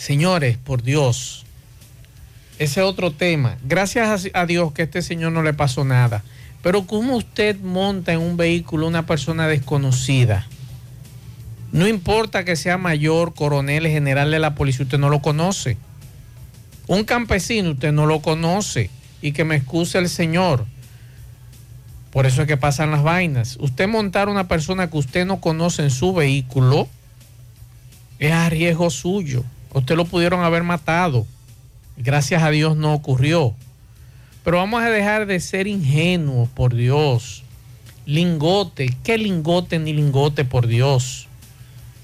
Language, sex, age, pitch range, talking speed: Spanish, male, 50-69, 125-175 Hz, 145 wpm